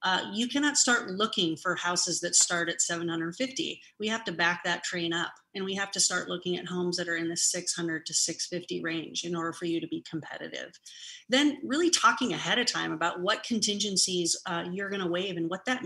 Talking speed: 220 wpm